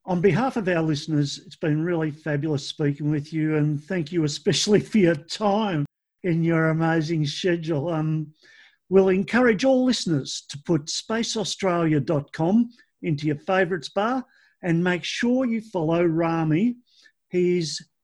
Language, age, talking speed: English, 50-69, 140 wpm